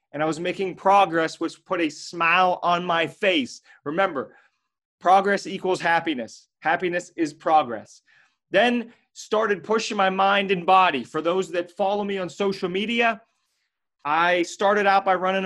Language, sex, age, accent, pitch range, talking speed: English, male, 30-49, American, 155-195 Hz, 150 wpm